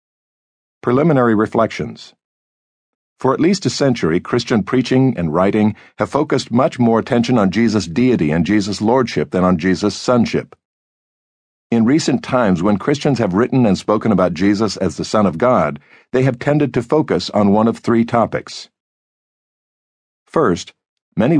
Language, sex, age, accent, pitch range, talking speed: English, male, 60-79, American, 90-120 Hz, 150 wpm